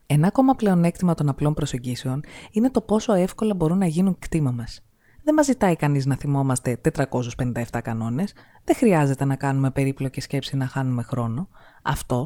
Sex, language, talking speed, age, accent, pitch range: female, Greek, 160 wpm, 20-39, native, 135-200 Hz